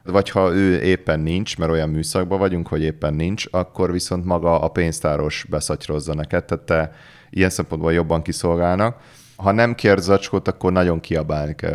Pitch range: 80-95 Hz